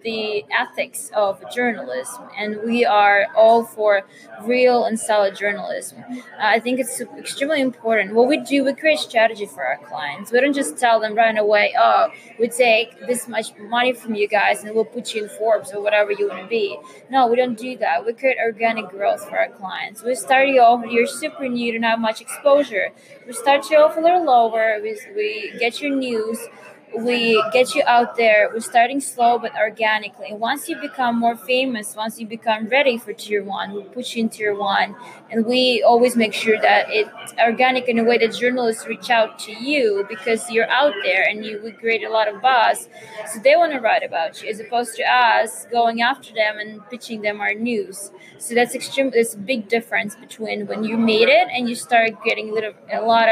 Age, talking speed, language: 20-39, 210 wpm, English